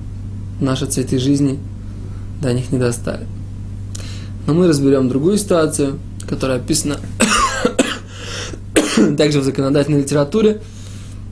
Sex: male